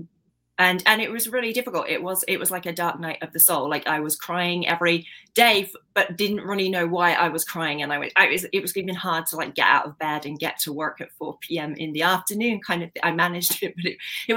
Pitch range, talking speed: 160-190 Hz, 265 wpm